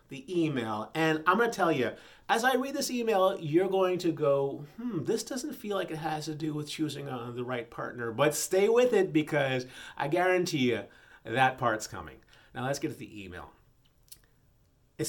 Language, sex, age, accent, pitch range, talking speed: English, male, 30-49, American, 125-190 Hz, 200 wpm